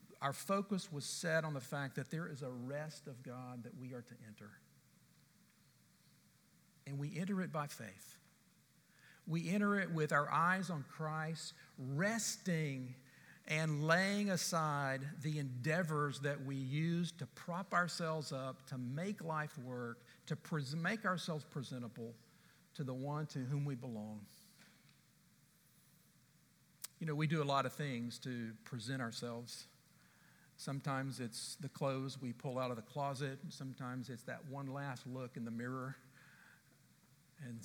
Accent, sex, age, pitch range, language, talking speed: American, male, 50-69, 125-155 Hz, English, 150 wpm